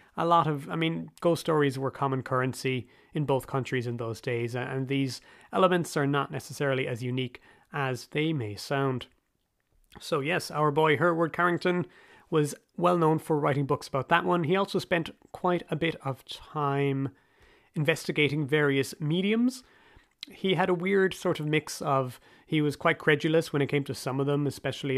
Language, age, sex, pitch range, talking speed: English, 30-49, male, 130-170 Hz, 180 wpm